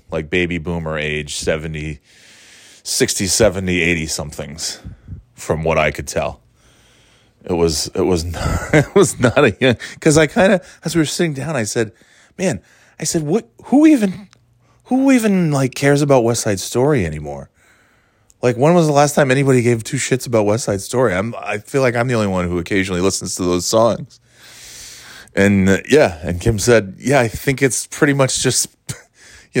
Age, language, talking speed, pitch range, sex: 20-39, English, 185 wpm, 90-125 Hz, male